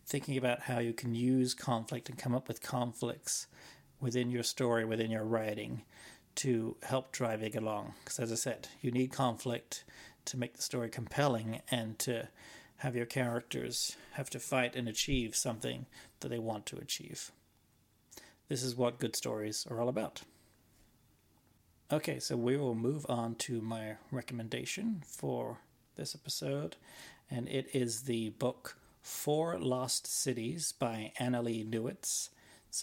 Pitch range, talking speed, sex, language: 115-130 Hz, 150 wpm, male, English